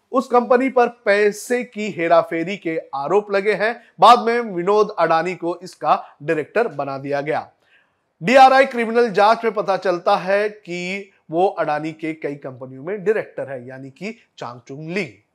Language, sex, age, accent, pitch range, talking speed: Hindi, male, 30-49, native, 165-215 Hz, 90 wpm